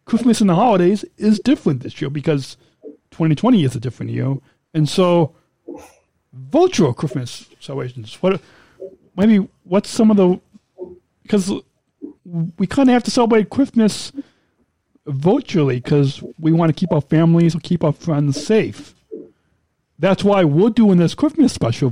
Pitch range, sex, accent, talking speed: 140-190 Hz, male, American, 145 wpm